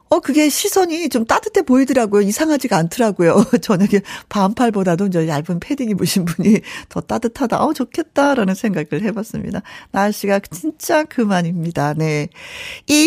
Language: Korean